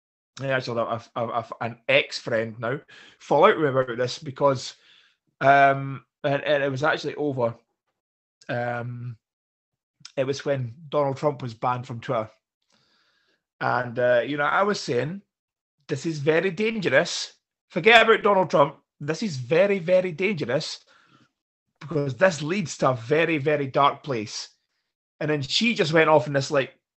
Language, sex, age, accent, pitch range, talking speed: English, male, 20-39, British, 125-150 Hz, 150 wpm